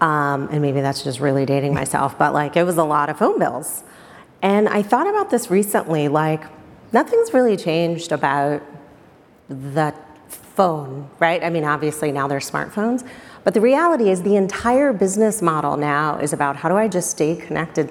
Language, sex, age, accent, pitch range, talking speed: English, female, 30-49, American, 150-195 Hz, 180 wpm